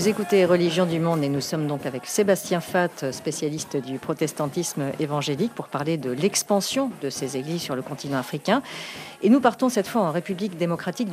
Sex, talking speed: female, 190 wpm